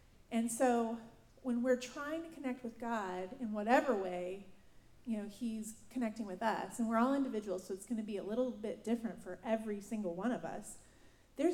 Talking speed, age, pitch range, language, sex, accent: 200 wpm, 30-49, 195-235 Hz, English, female, American